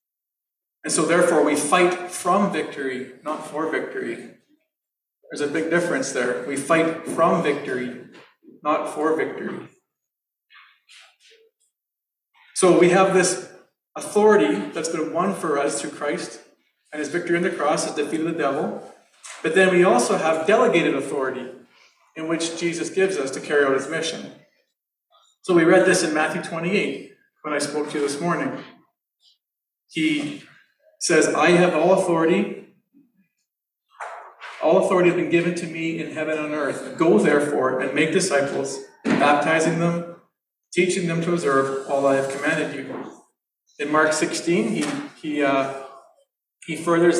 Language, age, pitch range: English, 40-59, 150-185 Hz